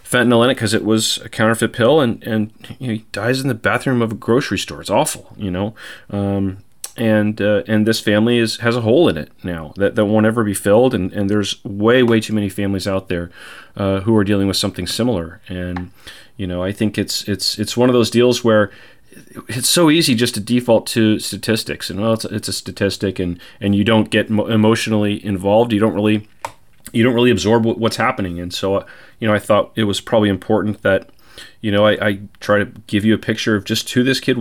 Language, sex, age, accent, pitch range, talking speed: English, male, 30-49, American, 95-115 Hz, 230 wpm